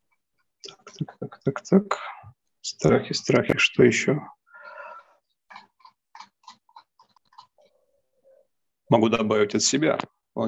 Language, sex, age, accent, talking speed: Russian, male, 40-59, native, 75 wpm